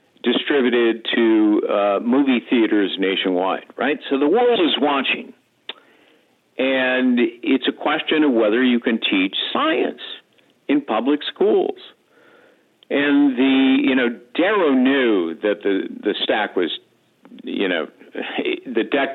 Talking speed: 125 wpm